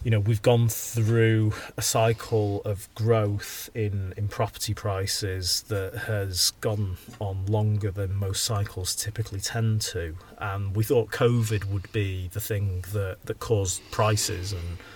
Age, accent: 30-49, British